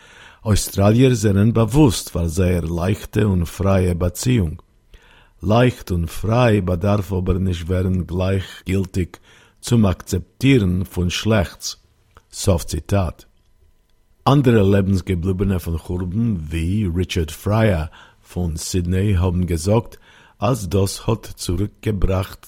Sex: male